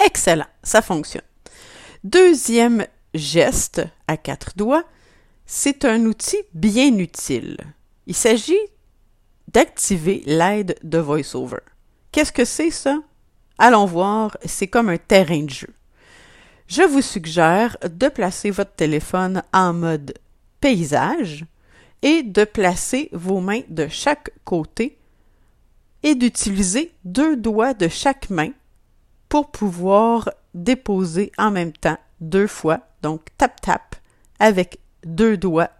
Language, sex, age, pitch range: French, female, 50-69, 165-240 Hz